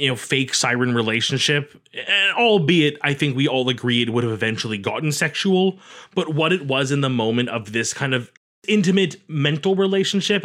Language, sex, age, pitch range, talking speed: English, male, 20-39, 125-160 Hz, 185 wpm